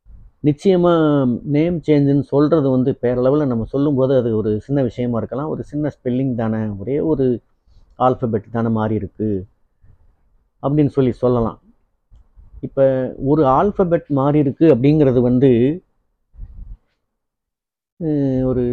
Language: Tamil